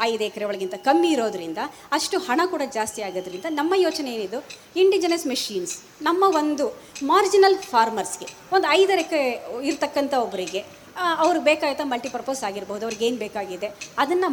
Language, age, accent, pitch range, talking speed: Kannada, 20-39, native, 245-345 Hz, 125 wpm